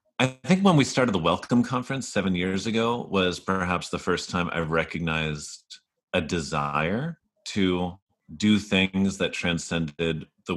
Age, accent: 30-49, American